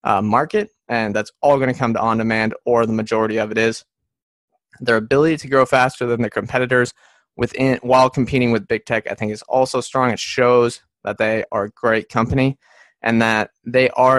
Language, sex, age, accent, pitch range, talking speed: English, male, 20-39, American, 115-130 Hz, 205 wpm